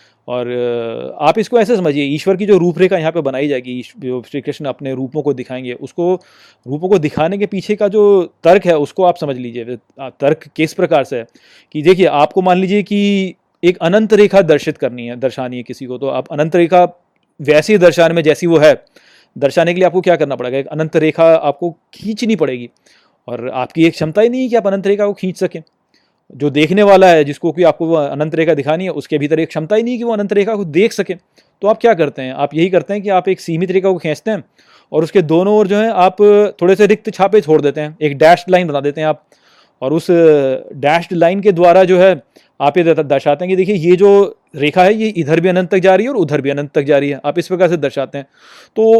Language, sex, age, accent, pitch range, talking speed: Hindi, male, 30-49, native, 145-195 Hz, 240 wpm